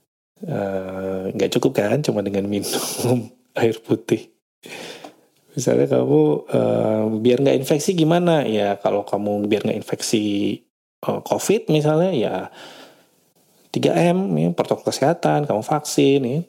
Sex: male